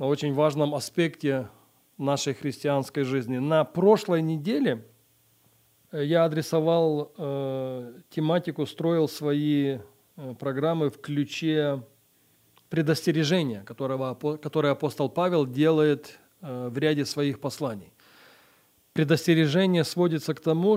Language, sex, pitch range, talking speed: English, male, 135-165 Hz, 85 wpm